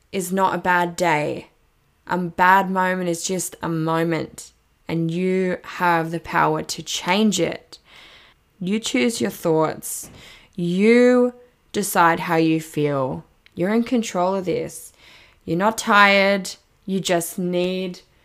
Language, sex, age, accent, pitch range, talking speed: English, female, 10-29, Australian, 180-245 Hz, 130 wpm